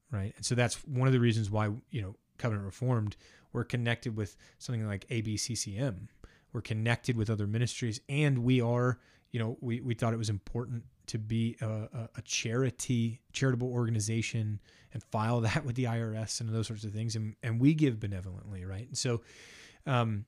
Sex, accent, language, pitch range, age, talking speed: male, American, English, 105-125 Hz, 30-49, 185 wpm